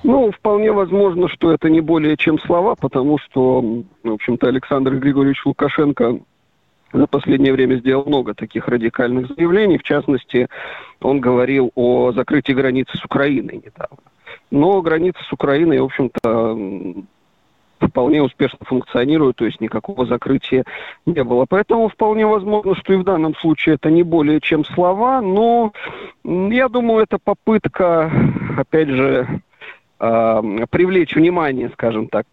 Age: 40-59